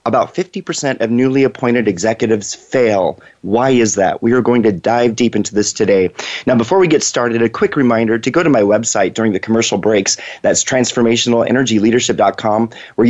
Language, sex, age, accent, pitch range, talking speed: English, male, 30-49, American, 110-125 Hz, 180 wpm